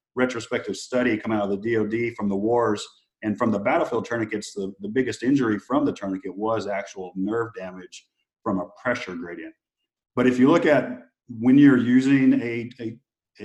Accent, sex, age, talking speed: American, male, 40-59, 185 wpm